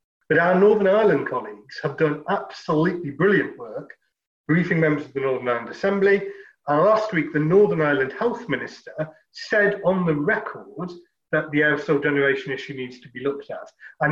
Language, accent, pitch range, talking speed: English, British, 140-205 Hz, 170 wpm